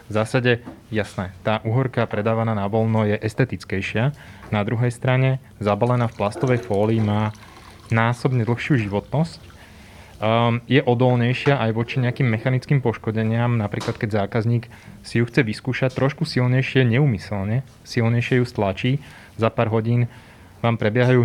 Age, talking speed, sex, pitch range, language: 20-39, 135 wpm, male, 105-130 Hz, Slovak